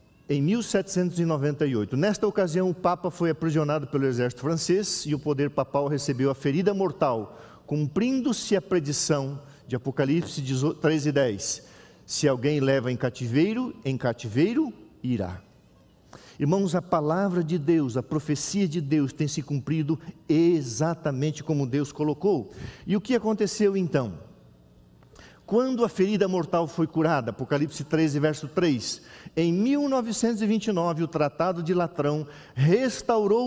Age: 50-69